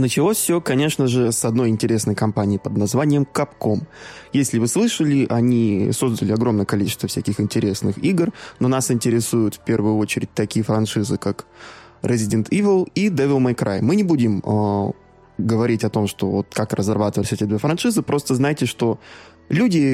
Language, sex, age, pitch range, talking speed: Russian, male, 20-39, 110-140 Hz, 165 wpm